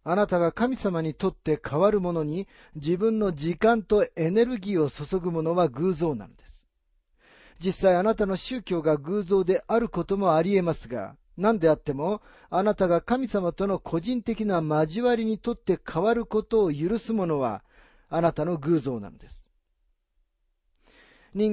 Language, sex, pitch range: Japanese, male, 150-205 Hz